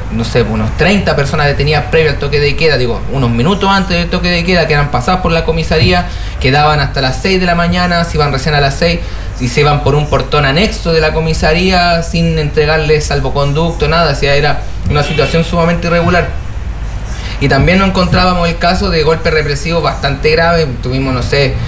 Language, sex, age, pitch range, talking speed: Spanish, male, 30-49, 125-160 Hz, 200 wpm